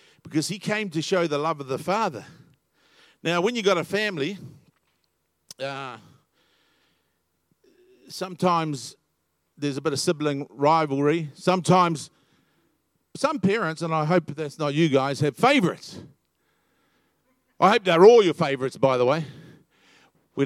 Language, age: English, 50-69